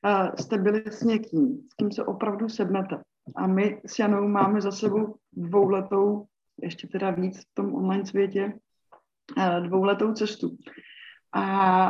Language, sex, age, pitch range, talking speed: Czech, female, 20-39, 195-225 Hz, 155 wpm